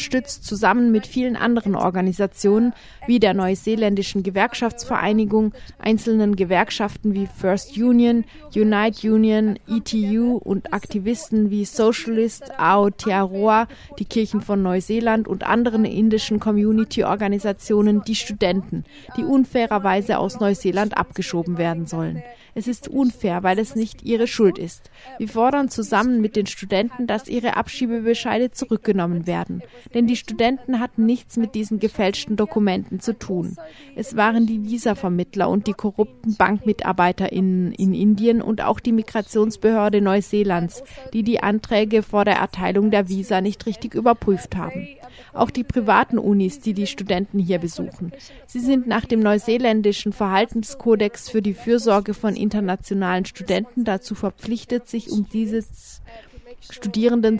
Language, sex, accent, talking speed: German, female, German, 130 wpm